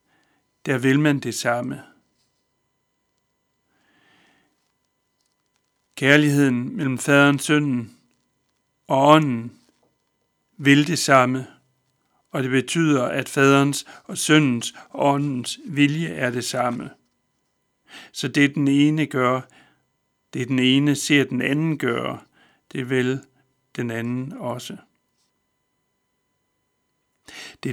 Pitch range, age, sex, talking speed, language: 125-145 Hz, 60-79, male, 95 wpm, Danish